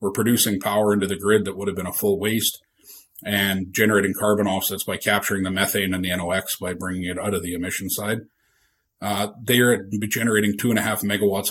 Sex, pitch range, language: male, 95-110 Hz, English